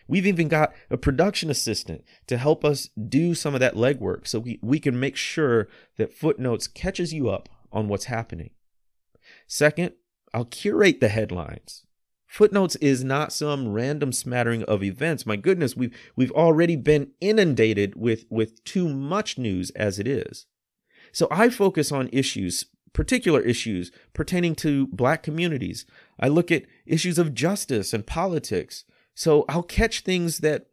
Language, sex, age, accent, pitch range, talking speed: English, male, 30-49, American, 110-155 Hz, 155 wpm